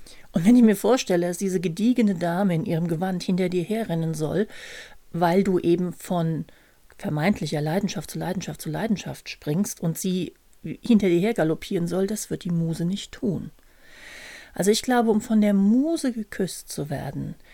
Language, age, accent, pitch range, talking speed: German, 40-59, German, 170-215 Hz, 170 wpm